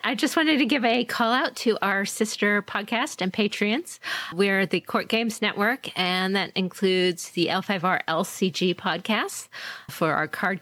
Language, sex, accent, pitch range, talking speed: English, female, American, 165-210 Hz, 165 wpm